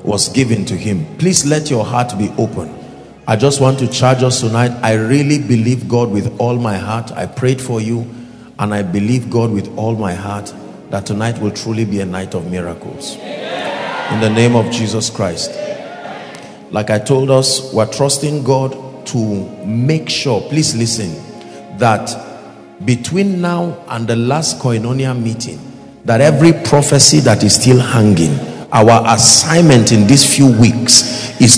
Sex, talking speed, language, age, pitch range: male, 165 wpm, English, 40-59, 110-135 Hz